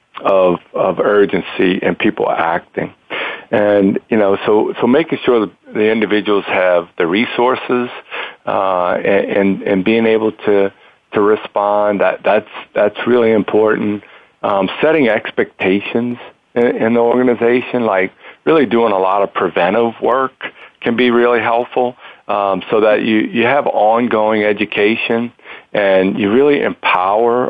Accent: American